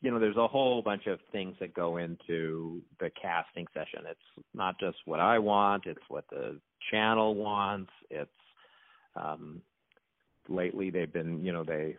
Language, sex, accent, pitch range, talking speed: English, male, American, 85-105 Hz, 165 wpm